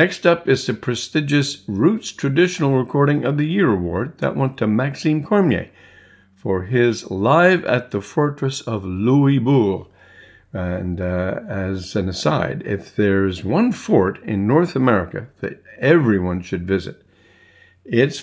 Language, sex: English, male